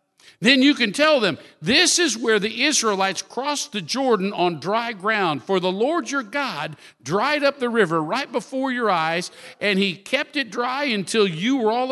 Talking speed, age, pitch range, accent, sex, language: 190 wpm, 50-69, 180-255 Hz, American, male, English